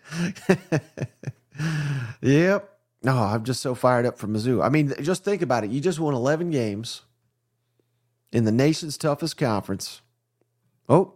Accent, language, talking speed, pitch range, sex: American, English, 145 wpm, 125-155 Hz, male